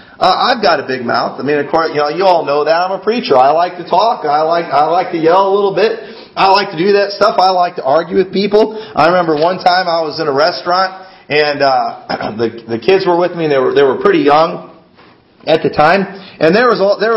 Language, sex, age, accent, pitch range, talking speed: English, male, 40-59, American, 140-200 Hz, 265 wpm